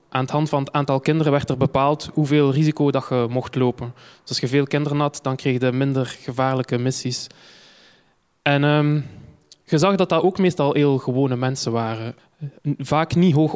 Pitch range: 130-150 Hz